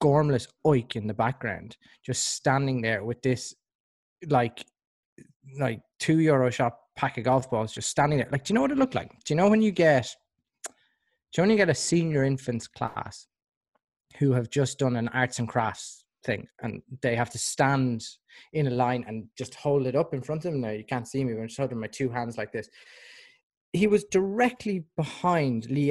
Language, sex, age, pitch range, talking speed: English, male, 20-39, 115-145 Hz, 205 wpm